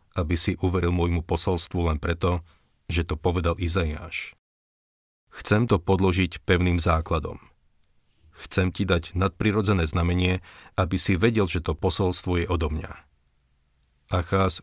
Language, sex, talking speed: Slovak, male, 125 wpm